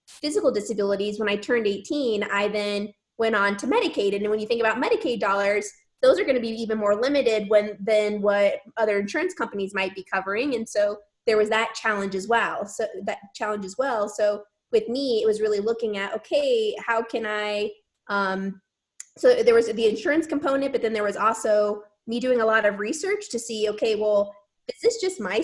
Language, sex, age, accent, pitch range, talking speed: English, female, 20-39, American, 205-240 Hz, 205 wpm